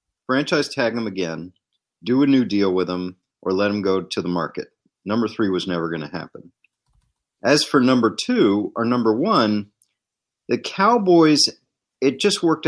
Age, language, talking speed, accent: 40-59, English, 170 wpm, American